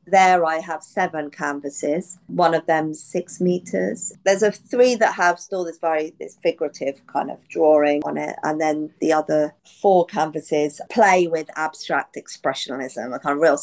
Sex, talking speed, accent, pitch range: female, 170 wpm, British, 150-180 Hz